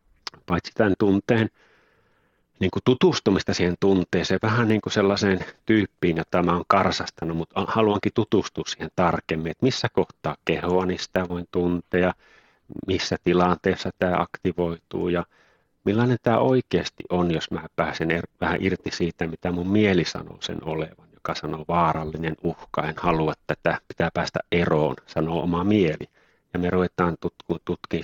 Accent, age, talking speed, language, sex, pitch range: native, 30-49, 145 wpm, Finnish, male, 85-95 Hz